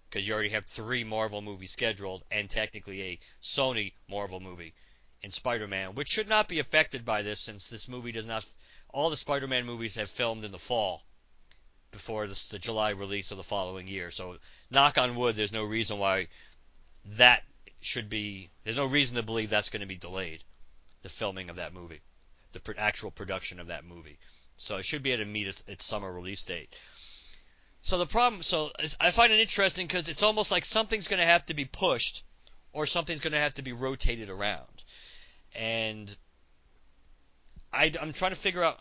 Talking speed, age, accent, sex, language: 195 wpm, 50-69, American, male, English